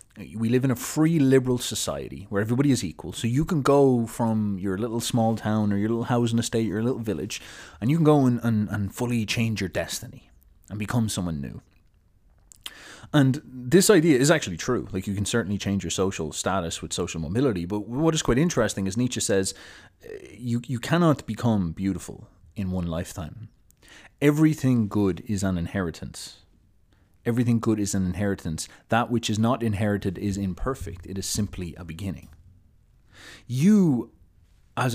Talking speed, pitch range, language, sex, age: 175 wpm, 95-120 Hz, English, male, 30-49